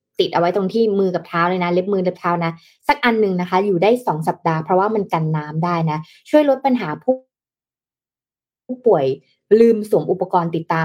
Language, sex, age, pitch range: Thai, female, 20-39, 165-220 Hz